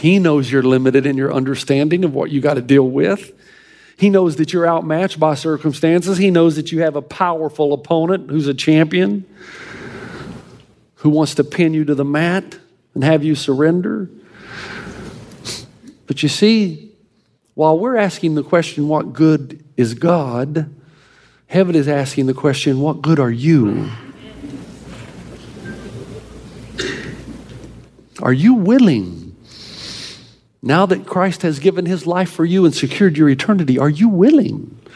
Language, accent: English, American